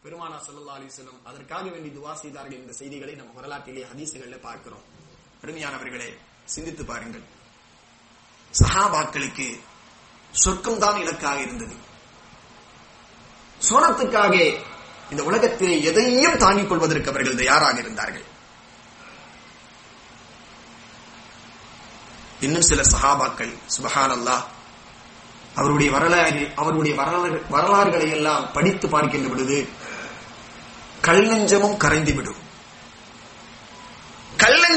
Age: 30-49